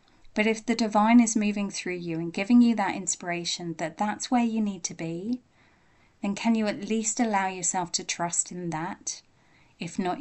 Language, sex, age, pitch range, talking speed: English, female, 30-49, 180-220 Hz, 195 wpm